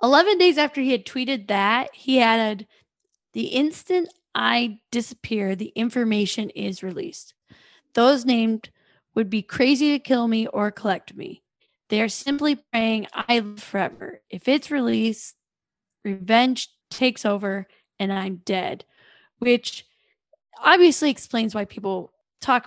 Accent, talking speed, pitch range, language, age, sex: American, 130 wpm, 205-255 Hz, English, 10-29, female